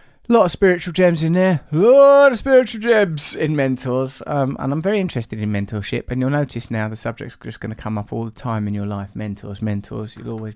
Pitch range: 115-155 Hz